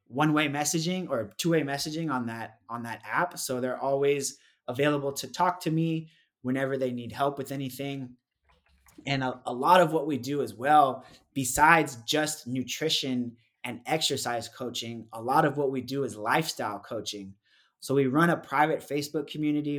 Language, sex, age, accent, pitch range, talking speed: English, male, 20-39, American, 125-155 Hz, 175 wpm